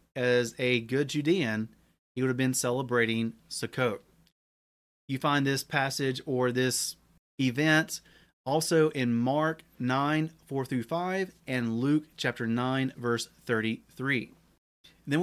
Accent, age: American, 30-49